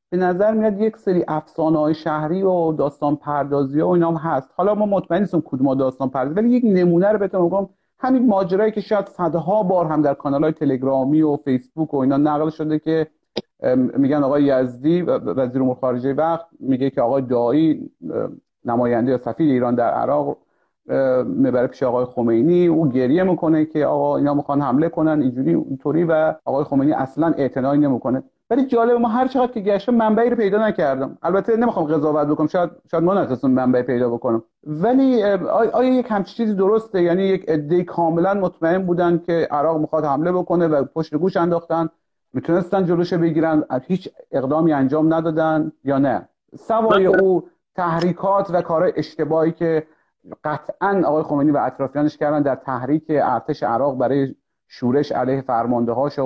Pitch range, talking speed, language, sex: 140-185 Hz, 165 wpm, Persian, male